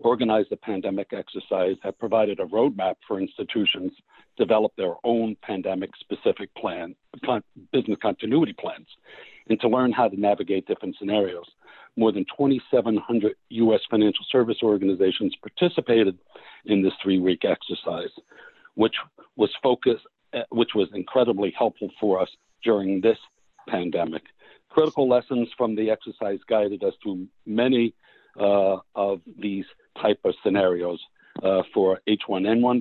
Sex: male